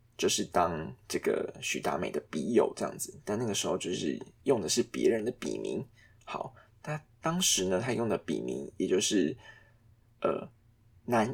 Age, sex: 20-39, male